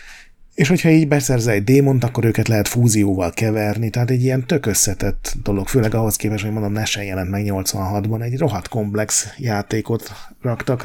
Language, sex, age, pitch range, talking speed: Hungarian, male, 30-49, 100-125 Hz, 165 wpm